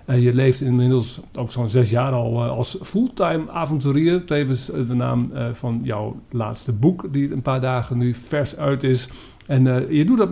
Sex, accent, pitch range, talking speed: male, Dutch, 125-155 Hz, 205 wpm